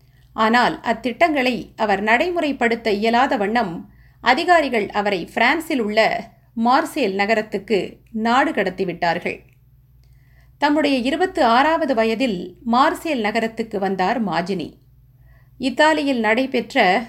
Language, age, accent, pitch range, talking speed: Tamil, 50-69, native, 200-275 Hz, 85 wpm